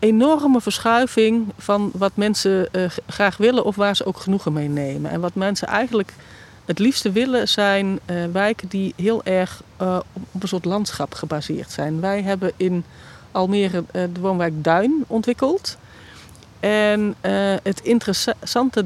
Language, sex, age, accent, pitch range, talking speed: Dutch, female, 40-59, Dutch, 180-215 Hz, 155 wpm